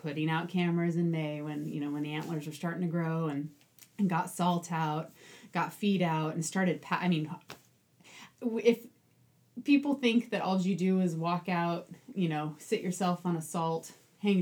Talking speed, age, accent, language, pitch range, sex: 190 wpm, 30-49, American, English, 155-185 Hz, female